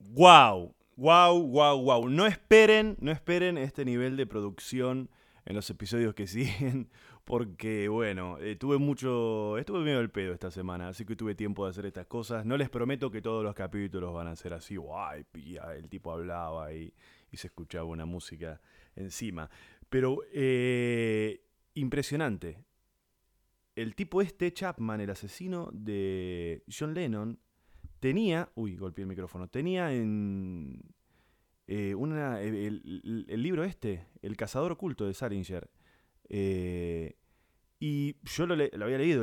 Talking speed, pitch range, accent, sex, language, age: 145 wpm, 95-140 Hz, Argentinian, male, Spanish, 20-39